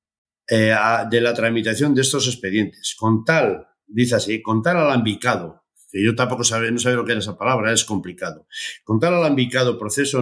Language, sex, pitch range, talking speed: Spanish, male, 110-145 Hz, 195 wpm